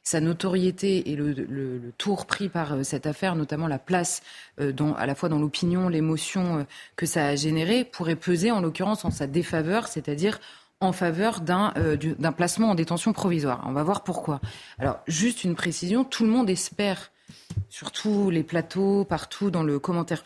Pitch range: 170-210 Hz